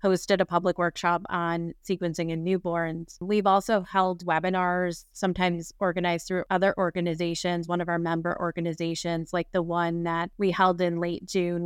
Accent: American